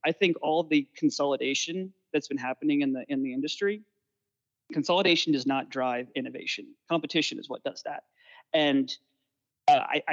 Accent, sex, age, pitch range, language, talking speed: American, male, 30-49, 135-165 Hz, English, 155 wpm